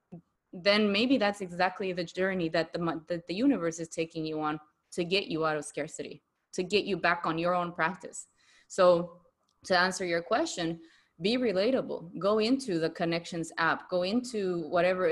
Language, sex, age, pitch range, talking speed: English, female, 20-39, 165-205 Hz, 175 wpm